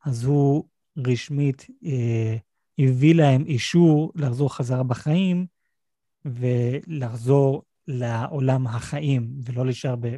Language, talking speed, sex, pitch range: Hebrew, 95 wpm, male, 125-150 Hz